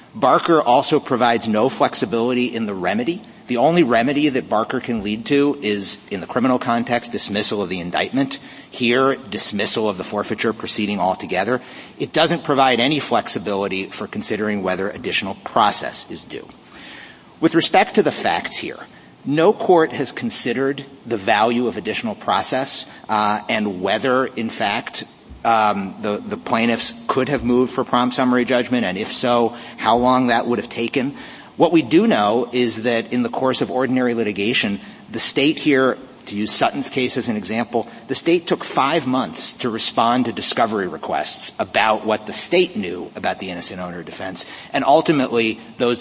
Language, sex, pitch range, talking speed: English, male, 110-130 Hz, 170 wpm